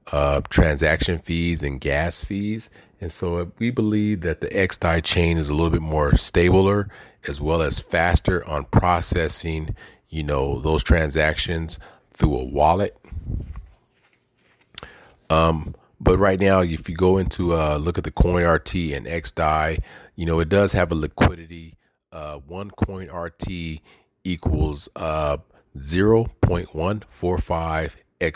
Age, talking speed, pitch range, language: 30-49, 135 wpm, 75-95 Hz, English